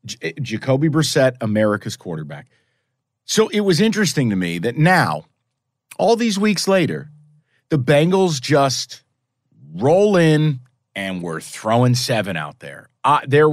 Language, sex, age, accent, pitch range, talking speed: English, male, 40-59, American, 115-155 Hz, 125 wpm